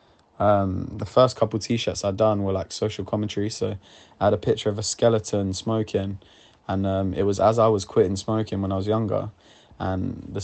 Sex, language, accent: male, English, British